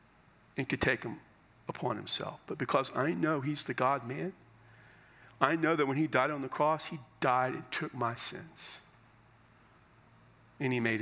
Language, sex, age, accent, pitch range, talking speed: English, male, 40-59, American, 115-135 Hz, 175 wpm